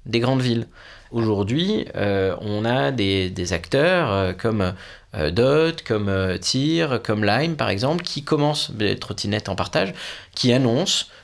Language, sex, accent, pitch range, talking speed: French, male, French, 95-130 Hz, 155 wpm